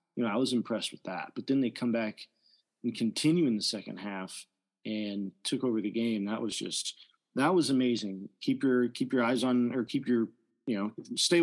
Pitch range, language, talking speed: 110-135 Hz, English, 215 wpm